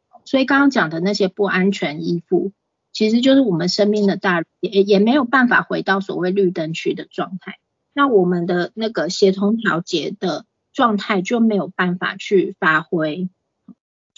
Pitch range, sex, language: 180-225 Hz, female, Chinese